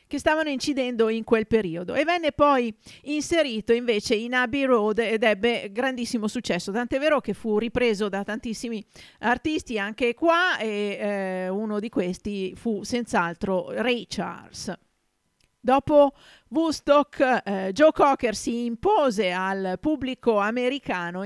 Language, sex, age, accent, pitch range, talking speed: Italian, female, 40-59, native, 200-255 Hz, 135 wpm